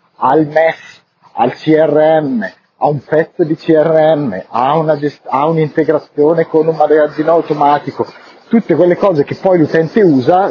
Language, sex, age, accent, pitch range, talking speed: Italian, female, 30-49, native, 150-195 Hz, 145 wpm